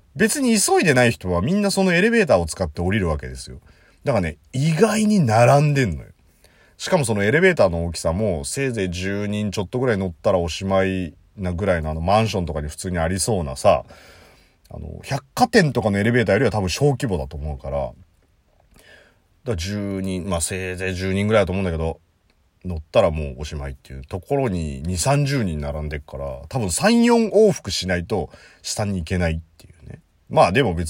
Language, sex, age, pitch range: Japanese, male, 40-59, 80-115 Hz